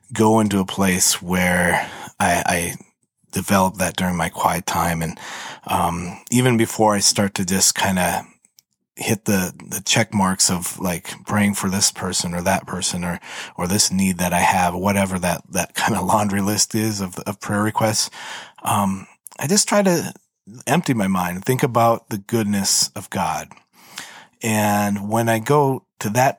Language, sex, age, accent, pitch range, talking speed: English, male, 30-49, American, 95-115 Hz, 175 wpm